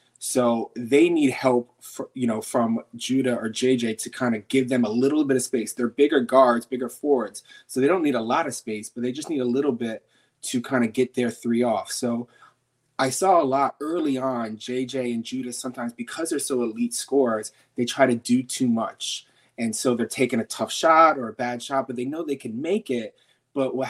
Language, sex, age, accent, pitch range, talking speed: English, male, 20-39, American, 120-135 Hz, 225 wpm